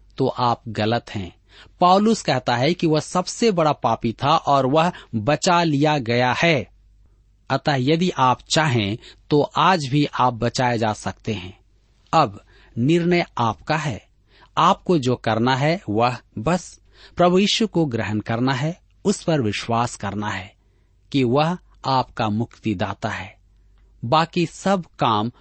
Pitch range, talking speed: 110-165 Hz, 140 wpm